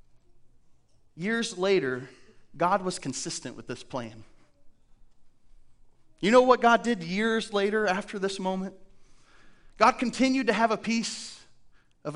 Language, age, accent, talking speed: English, 30-49, American, 125 wpm